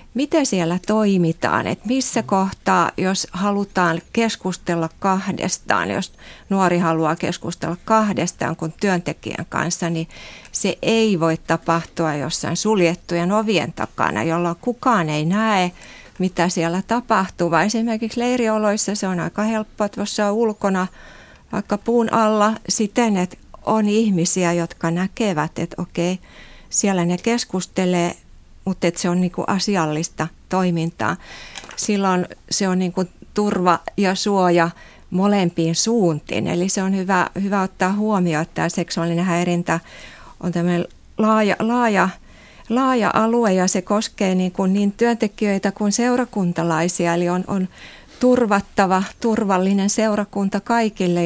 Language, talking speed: Finnish, 125 wpm